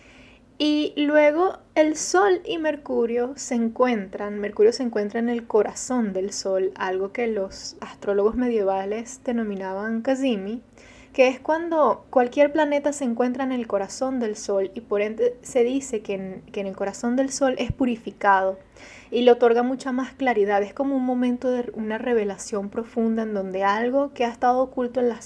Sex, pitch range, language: female, 205-265 Hz, Spanish